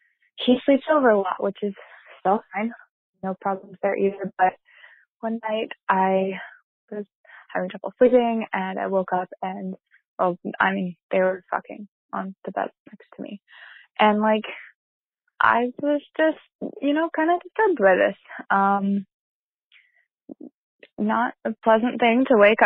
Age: 20-39